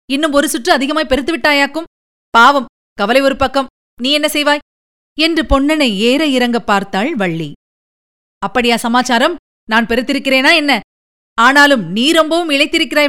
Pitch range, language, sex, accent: 240-295 Hz, Tamil, female, native